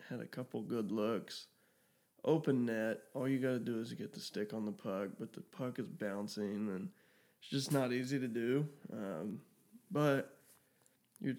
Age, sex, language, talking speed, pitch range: 20-39, male, English, 175 wpm, 120-140 Hz